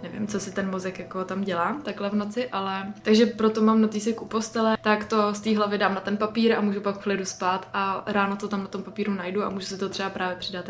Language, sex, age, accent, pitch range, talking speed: Czech, female, 20-39, native, 190-215 Hz, 265 wpm